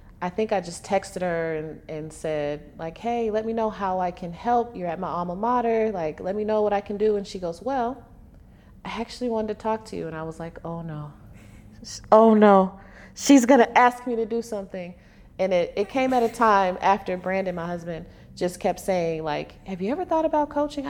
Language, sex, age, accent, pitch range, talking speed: English, female, 30-49, American, 155-230 Hz, 225 wpm